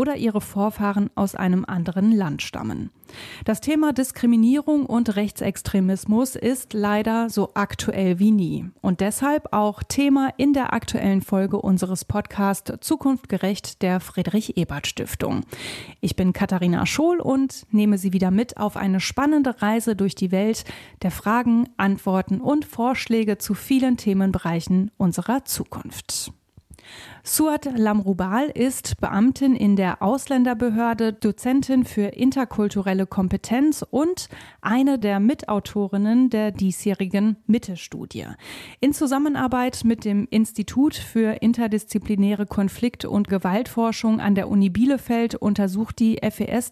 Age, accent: 30-49, German